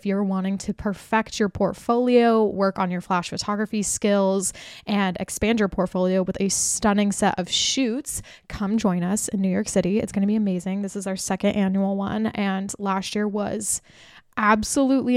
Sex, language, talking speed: female, English, 180 wpm